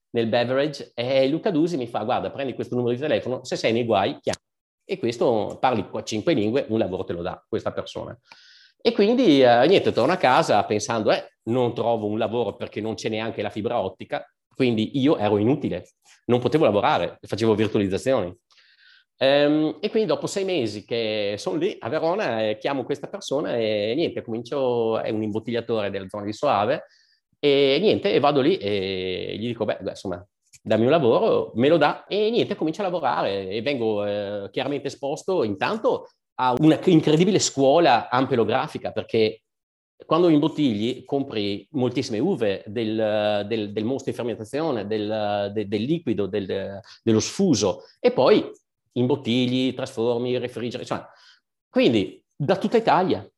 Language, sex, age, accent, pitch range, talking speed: Italian, male, 30-49, native, 110-145 Hz, 165 wpm